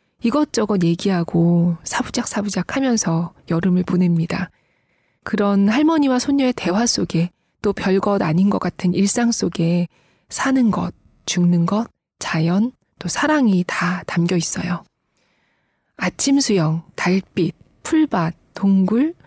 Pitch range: 175-225 Hz